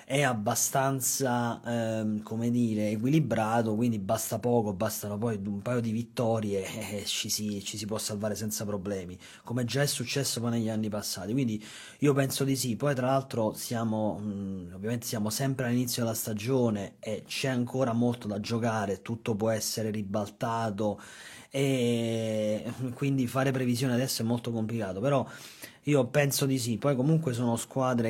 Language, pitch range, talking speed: Italian, 110-130 Hz, 155 wpm